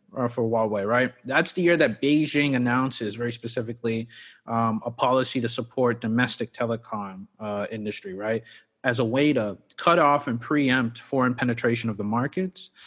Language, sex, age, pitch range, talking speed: English, male, 30-49, 115-140 Hz, 160 wpm